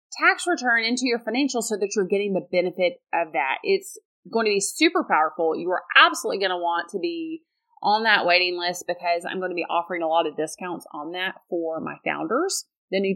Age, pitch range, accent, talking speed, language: 30-49, 165-210 Hz, American, 220 wpm, English